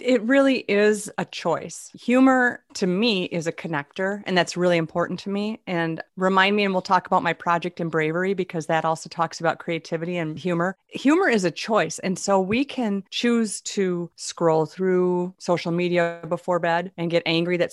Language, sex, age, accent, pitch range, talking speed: English, female, 30-49, American, 165-205 Hz, 190 wpm